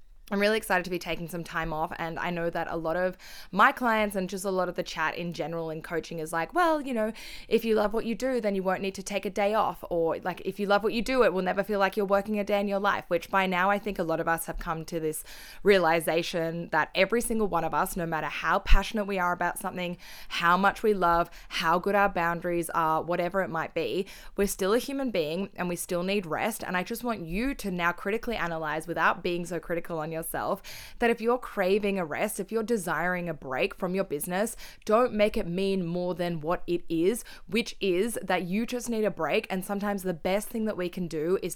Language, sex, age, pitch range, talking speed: English, female, 20-39, 170-205 Hz, 255 wpm